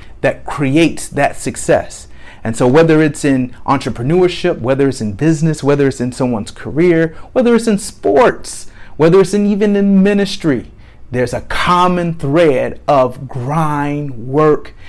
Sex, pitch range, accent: male, 140-190 Hz, American